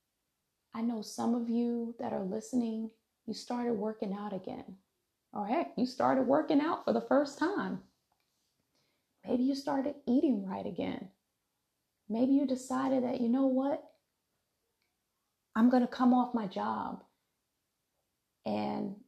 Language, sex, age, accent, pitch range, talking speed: English, female, 30-49, American, 195-260 Hz, 140 wpm